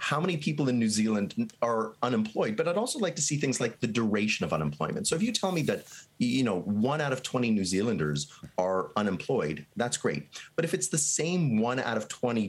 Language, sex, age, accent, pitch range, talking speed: English, male, 30-49, American, 105-155 Hz, 215 wpm